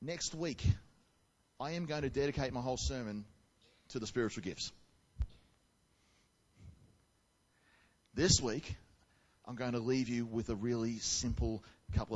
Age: 30-49